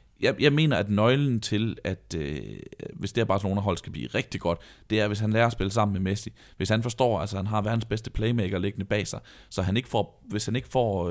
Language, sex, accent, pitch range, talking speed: Danish, male, native, 95-115 Hz, 250 wpm